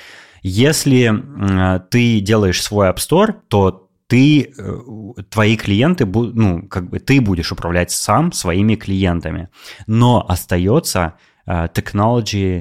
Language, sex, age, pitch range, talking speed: Russian, male, 20-39, 85-110 Hz, 105 wpm